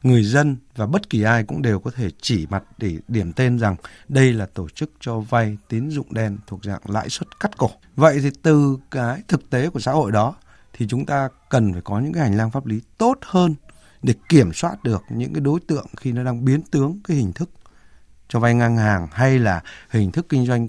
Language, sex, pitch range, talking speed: Vietnamese, male, 105-155 Hz, 235 wpm